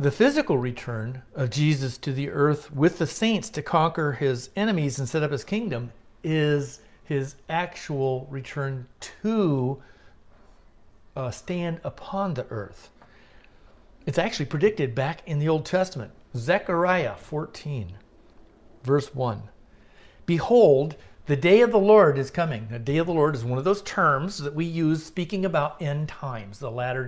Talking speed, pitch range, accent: 155 wpm, 125-170 Hz, American